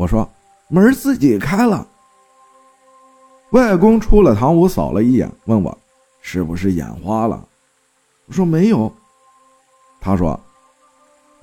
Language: Chinese